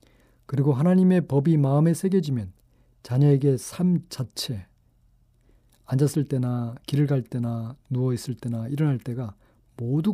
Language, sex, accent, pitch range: Korean, male, native, 120-165 Hz